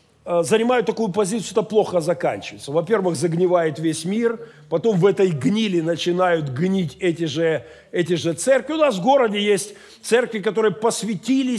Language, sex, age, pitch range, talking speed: Russian, male, 40-59, 180-250 Hz, 155 wpm